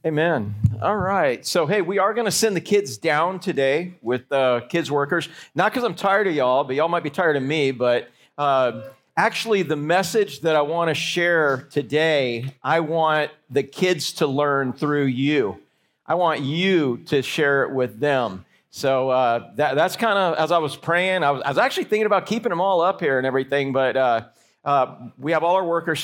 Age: 40-59